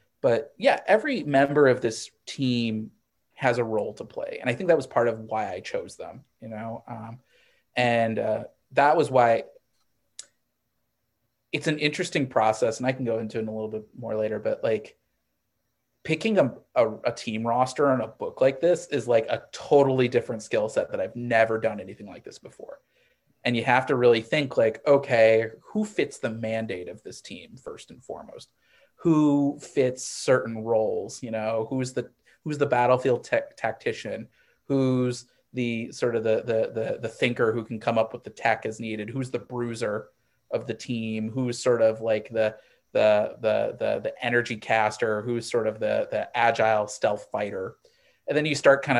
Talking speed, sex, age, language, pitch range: 185 wpm, male, 30-49, English, 110-130 Hz